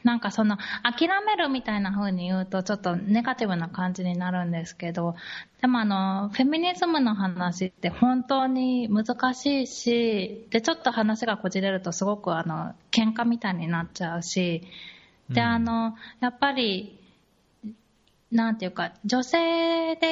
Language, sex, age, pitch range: Japanese, female, 20-39, 180-245 Hz